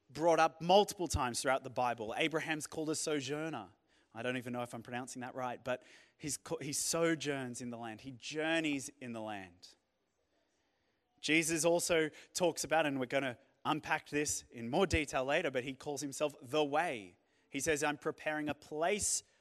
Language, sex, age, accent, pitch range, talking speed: English, male, 30-49, Australian, 120-160 Hz, 175 wpm